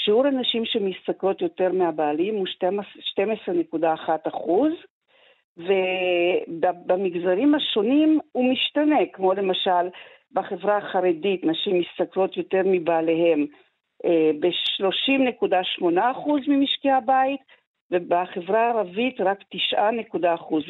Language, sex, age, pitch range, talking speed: Hebrew, female, 50-69, 175-260 Hz, 80 wpm